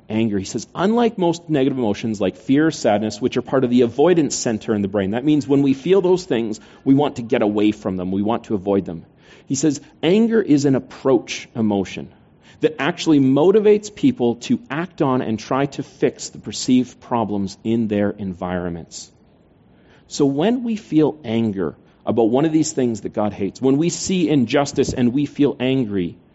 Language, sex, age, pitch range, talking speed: English, male, 40-59, 105-145 Hz, 195 wpm